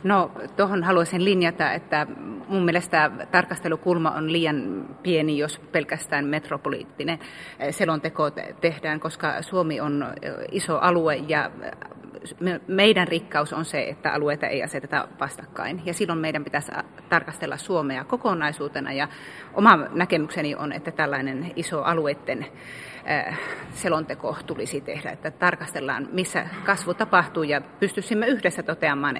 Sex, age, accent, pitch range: female, 30-49, native, 155-190 Hz